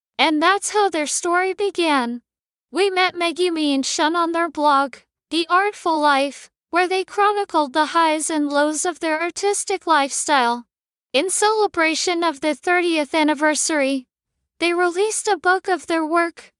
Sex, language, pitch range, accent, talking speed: female, English, 295-370 Hz, American, 150 wpm